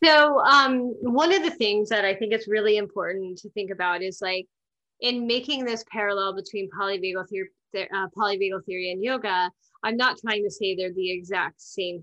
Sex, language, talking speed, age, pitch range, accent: female, English, 190 wpm, 20-39, 185-215 Hz, American